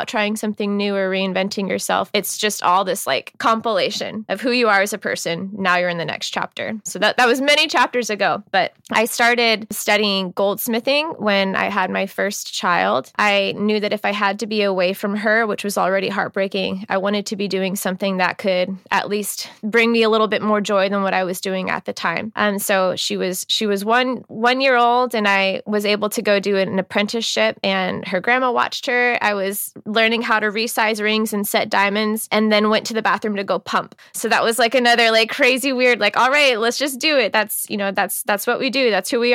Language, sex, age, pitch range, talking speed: English, female, 20-39, 195-225 Hz, 230 wpm